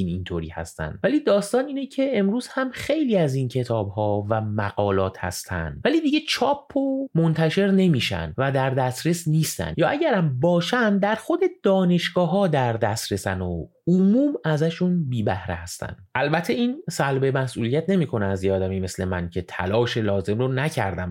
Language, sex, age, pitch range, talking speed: Persian, male, 30-49, 90-135 Hz, 150 wpm